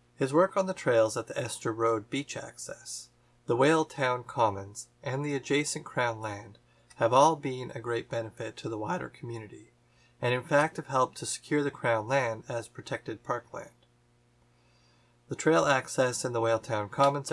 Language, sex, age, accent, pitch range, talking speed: English, male, 30-49, American, 110-140 Hz, 175 wpm